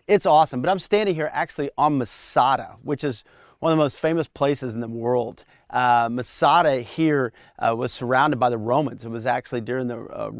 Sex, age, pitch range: male, 40-59, 120-140 Hz